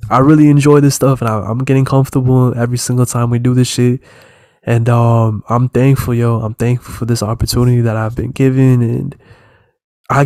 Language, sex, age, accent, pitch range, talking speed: English, male, 20-39, American, 120-130 Hz, 185 wpm